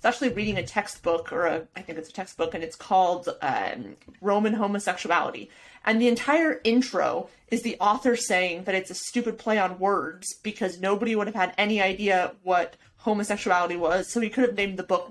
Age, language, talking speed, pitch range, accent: 30-49, English, 195 wpm, 185-235 Hz, American